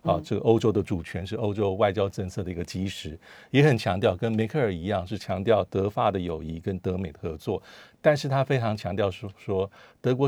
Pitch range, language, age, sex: 95-115 Hz, Chinese, 50-69, male